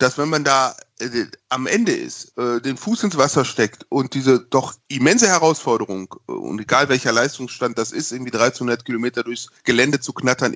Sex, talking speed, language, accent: male, 190 wpm, German, German